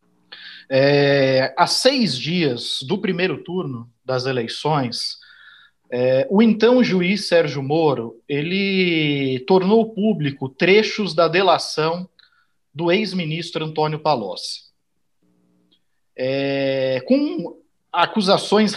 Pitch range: 145-195 Hz